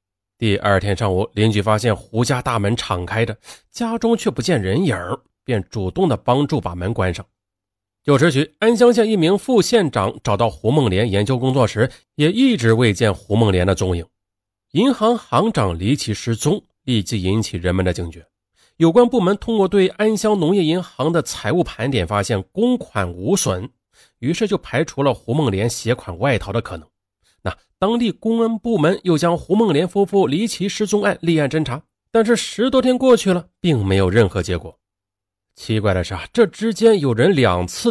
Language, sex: Chinese, male